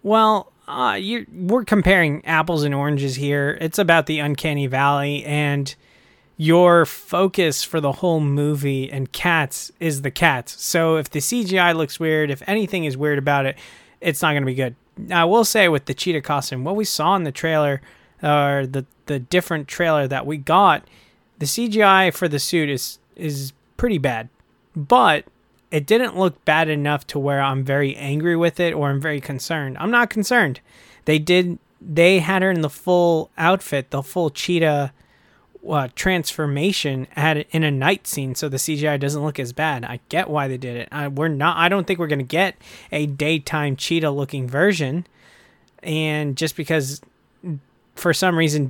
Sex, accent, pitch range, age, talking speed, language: male, American, 140-170 Hz, 20-39, 180 wpm, English